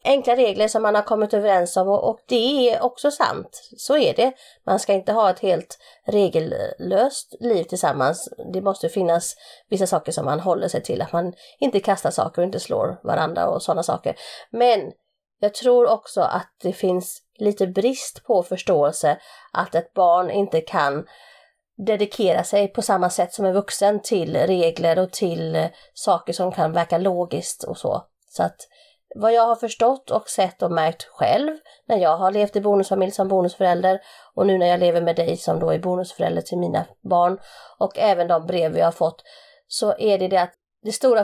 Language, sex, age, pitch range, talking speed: Swedish, female, 30-49, 180-245 Hz, 190 wpm